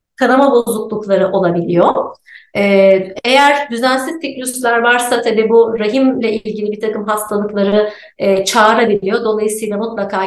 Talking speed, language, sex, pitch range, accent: 110 wpm, Turkish, female, 200-235 Hz, native